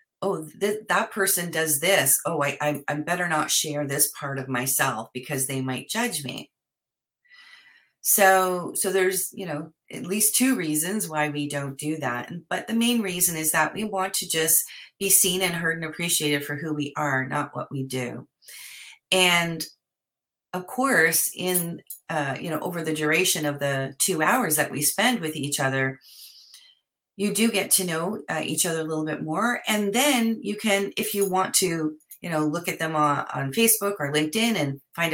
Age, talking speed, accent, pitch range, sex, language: 40-59, 190 wpm, American, 150-195 Hz, female, English